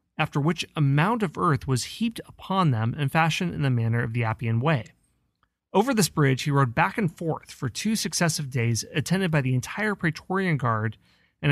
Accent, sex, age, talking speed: American, male, 30-49, 200 wpm